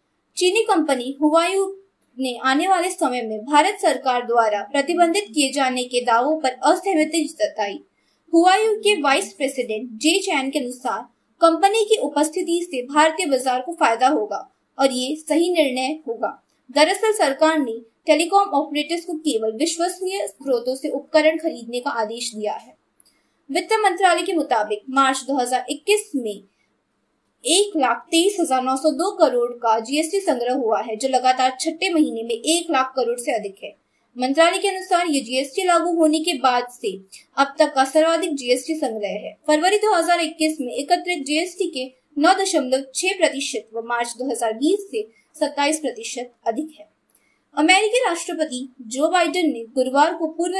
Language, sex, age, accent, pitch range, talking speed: Hindi, female, 20-39, native, 255-335 Hz, 155 wpm